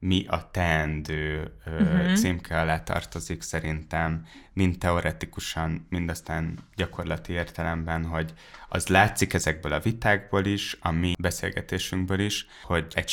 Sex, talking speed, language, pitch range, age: male, 120 wpm, Hungarian, 80-90 Hz, 10-29